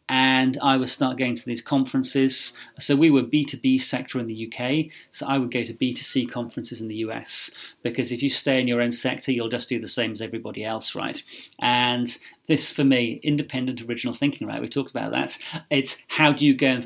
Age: 30-49